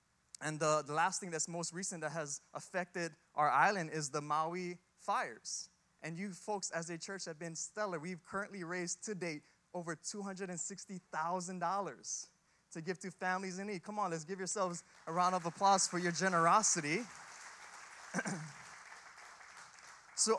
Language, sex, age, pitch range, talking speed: English, male, 20-39, 165-205 Hz, 150 wpm